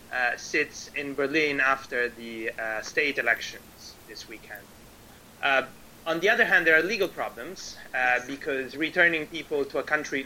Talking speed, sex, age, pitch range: 160 wpm, male, 30-49, 125-155 Hz